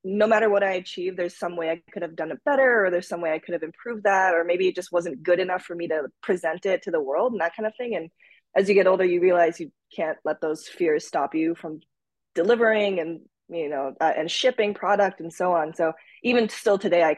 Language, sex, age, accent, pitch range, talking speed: English, female, 20-39, American, 165-215 Hz, 260 wpm